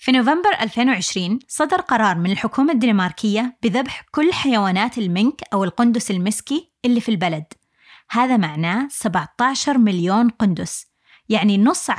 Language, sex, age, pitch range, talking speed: Arabic, female, 20-39, 205-265 Hz, 125 wpm